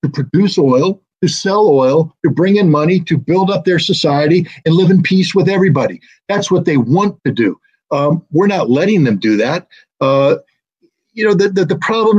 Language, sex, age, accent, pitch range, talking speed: English, male, 50-69, American, 150-190 Hz, 200 wpm